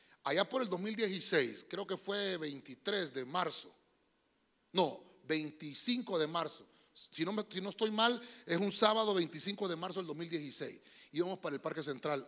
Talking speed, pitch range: 160 wpm, 155-215 Hz